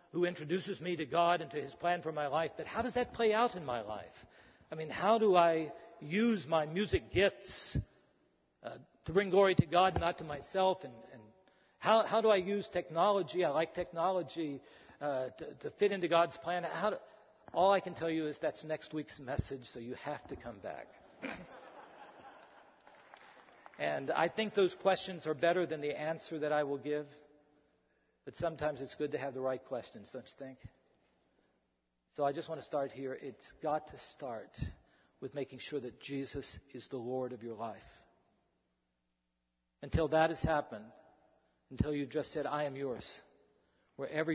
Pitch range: 135-175 Hz